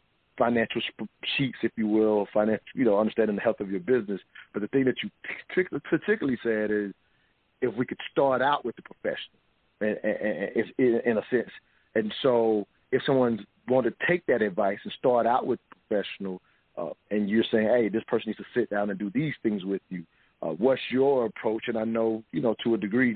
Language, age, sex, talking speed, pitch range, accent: English, 40-59, male, 205 wpm, 100-115 Hz, American